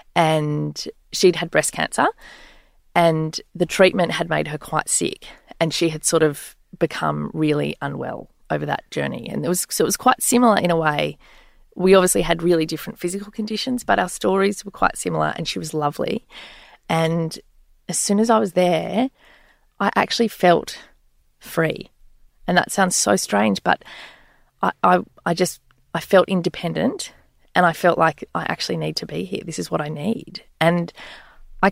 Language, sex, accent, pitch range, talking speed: English, female, Australian, 165-205 Hz, 175 wpm